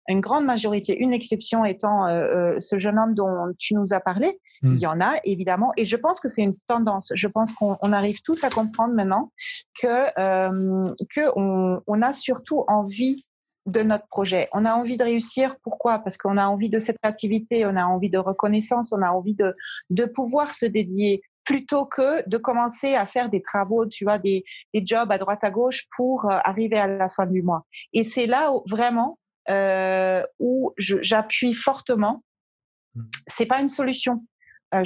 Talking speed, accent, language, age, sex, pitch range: 195 wpm, French, French, 30-49, female, 195-245 Hz